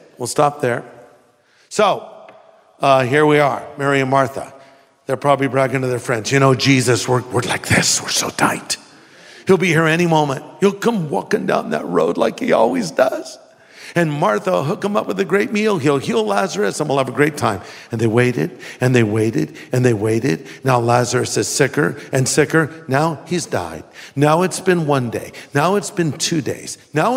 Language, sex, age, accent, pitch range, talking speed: English, male, 50-69, American, 145-210 Hz, 200 wpm